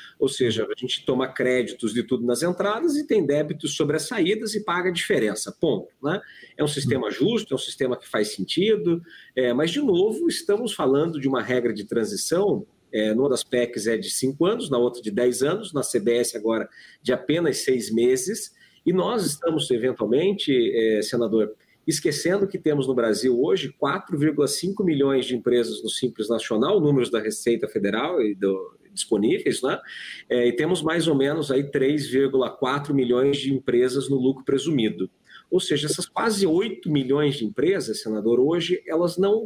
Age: 40-59